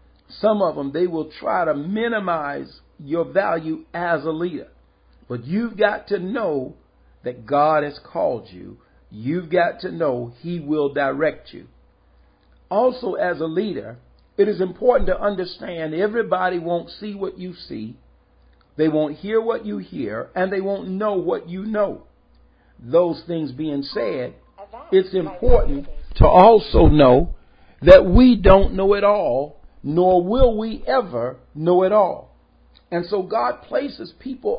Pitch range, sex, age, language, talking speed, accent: 140-200 Hz, male, 50-69, English, 150 wpm, American